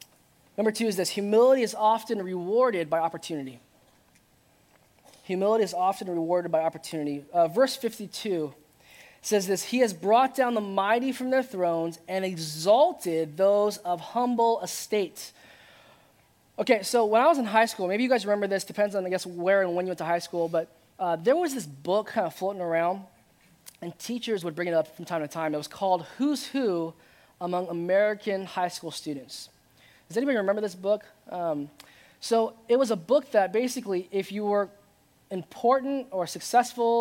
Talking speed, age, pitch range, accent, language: 180 wpm, 20-39, 180-245 Hz, American, English